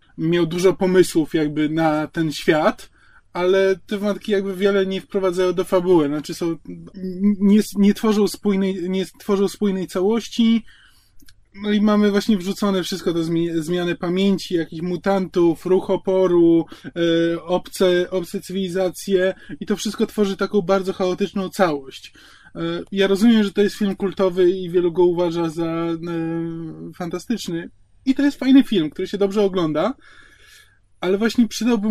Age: 20-39